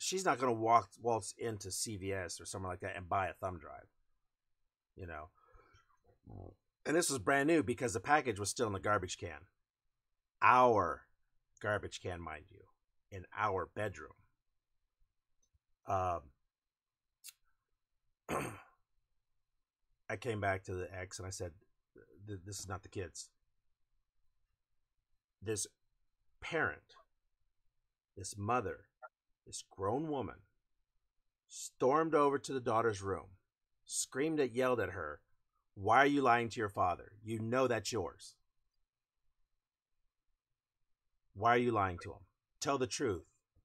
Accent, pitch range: American, 95-120 Hz